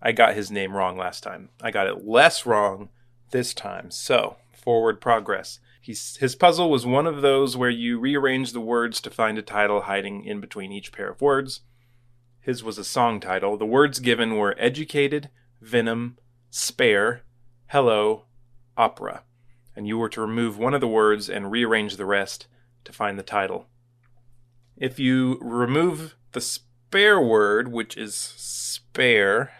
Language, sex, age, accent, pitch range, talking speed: English, male, 30-49, American, 115-125 Hz, 160 wpm